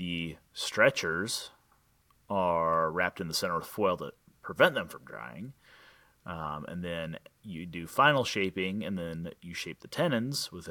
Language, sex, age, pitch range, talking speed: English, male, 30-49, 80-110 Hz, 155 wpm